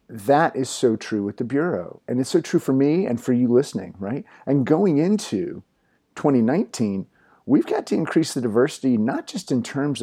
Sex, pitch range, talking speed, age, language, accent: male, 120-170 Hz, 190 wpm, 40-59, English, American